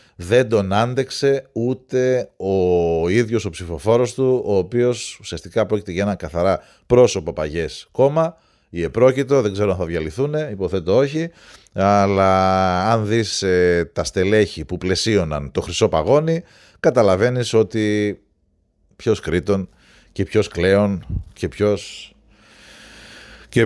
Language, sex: Greek, male